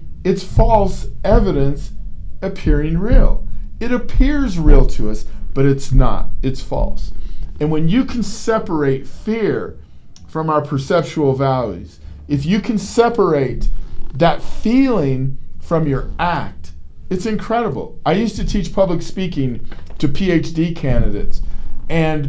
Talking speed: 125 wpm